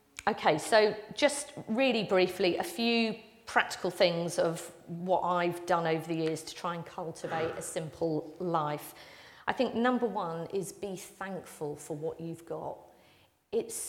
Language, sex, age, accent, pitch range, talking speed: English, female, 40-59, British, 165-210 Hz, 150 wpm